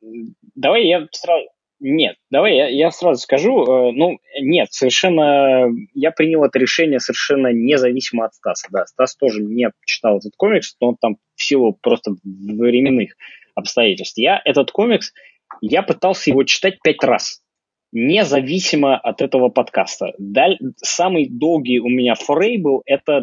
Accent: native